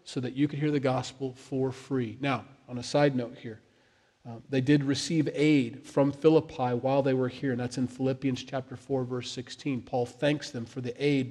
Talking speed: 210 wpm